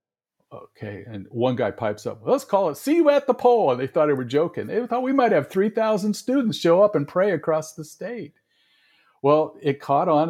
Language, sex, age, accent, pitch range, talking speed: English, male, 50-69, American, 105-145 Hz, 220 wpm